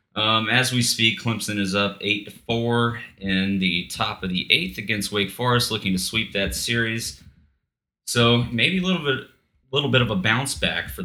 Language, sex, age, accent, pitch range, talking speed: English, male, 30-49, American, 90-105 Hz, 190 wpm